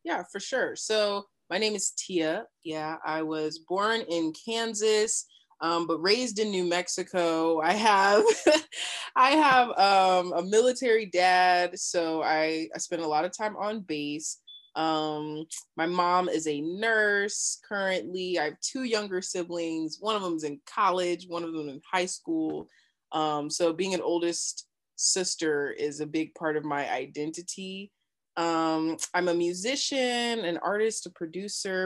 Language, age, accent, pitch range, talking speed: English, 20-39, American, 155-200 Hz, 155 wpm